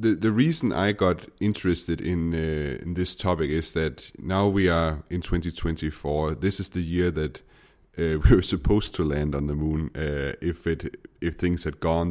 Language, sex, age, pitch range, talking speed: Danish, male, 30-49, 75-90 Hz, 195 wpm